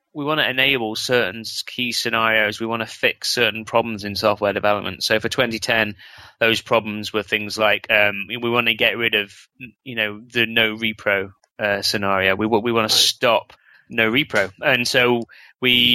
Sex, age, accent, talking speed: male, 20-39, British, 180 wpm